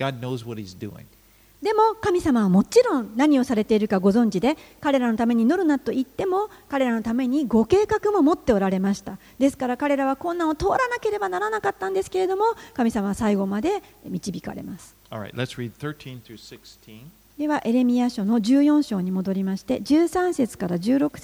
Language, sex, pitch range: Japanese, female, 205-295 Hz